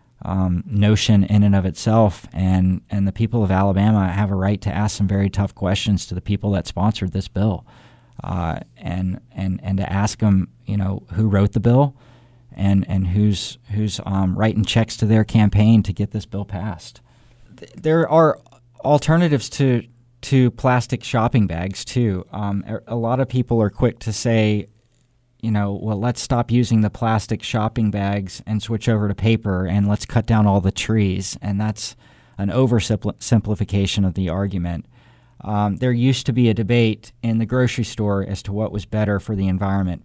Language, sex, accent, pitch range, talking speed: English, male, American, 100-115 Hz, 185 wpm